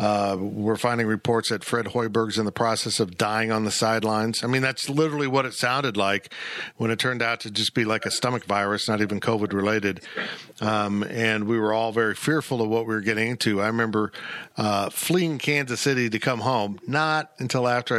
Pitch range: 110-130 Hz